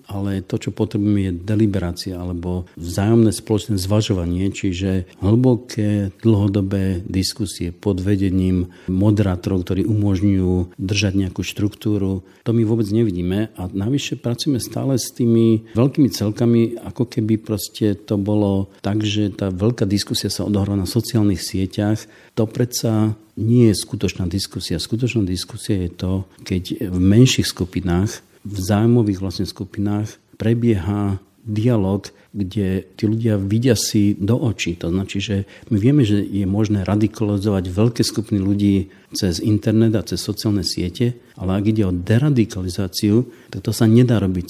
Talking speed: 140 wpm